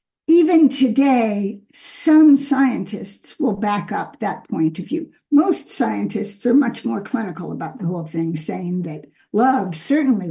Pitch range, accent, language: 210-265 Hz, American, English